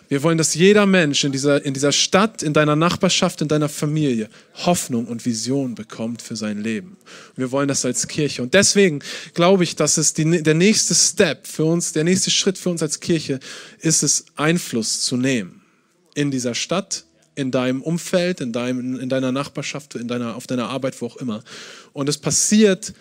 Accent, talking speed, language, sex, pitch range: German, 195 wpm, German, male, 130-170 Hz